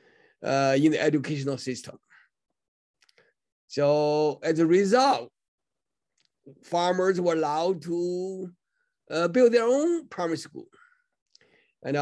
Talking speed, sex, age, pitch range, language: 100 wpm, male, 50-69, 145-200 Hz, English